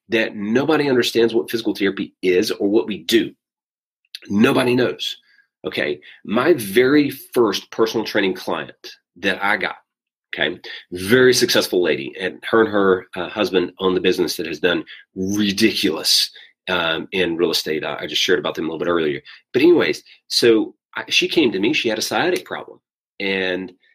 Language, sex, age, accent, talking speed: English, male, 30-49, American, 170 wpm